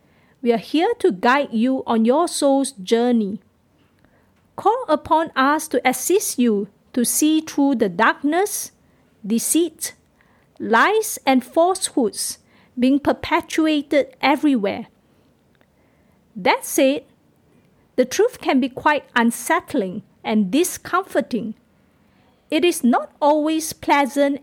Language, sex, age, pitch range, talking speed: English, female, 50-69, 250-320 Hz, 105 wpm